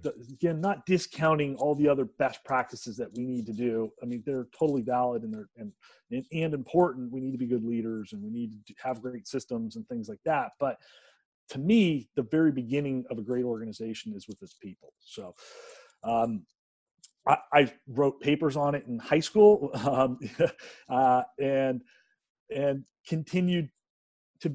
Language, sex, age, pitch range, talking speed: English, male, 40-59, 120-155 Hz, 175 wpm